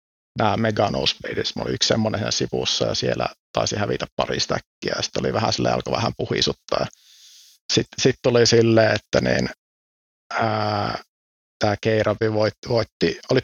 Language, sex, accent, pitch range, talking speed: Finnish, male, native, 90-120 Hz, 140 wpm